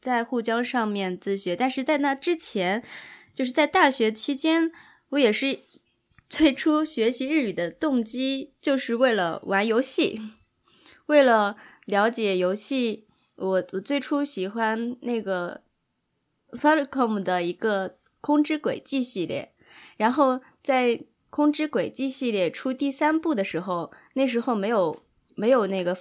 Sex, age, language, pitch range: female, 10-29, English, 195-270 Hz